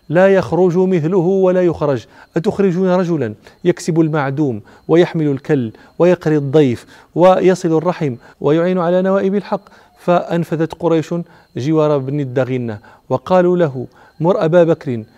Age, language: 40-59, Arabic